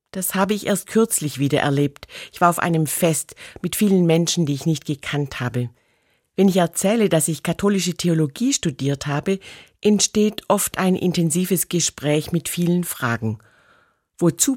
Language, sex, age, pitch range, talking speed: German, female, 50-69, 150-195 Hz, 155 wpm